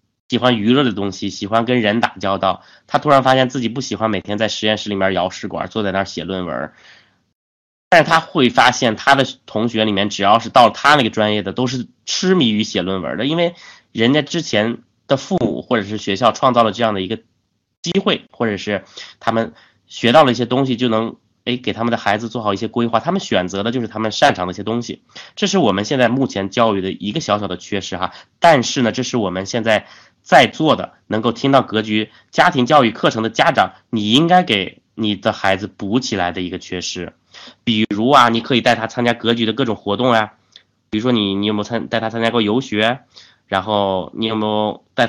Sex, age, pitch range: male, 20-39, 105-125 Hz